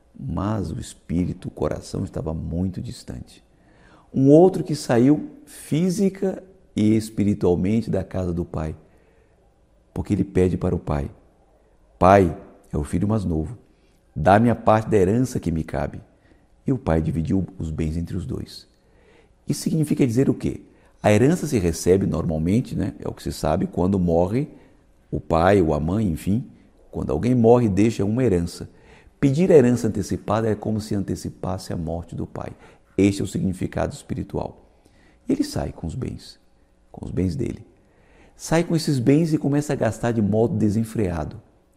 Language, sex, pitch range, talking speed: Portuguese, male, 90-120 Hz, 165 wpm